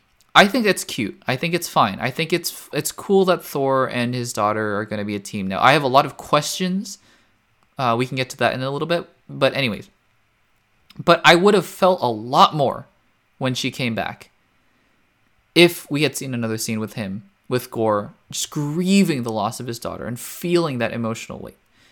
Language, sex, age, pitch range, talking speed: English, male, 20-39, 110-175 Hz, 210 wpm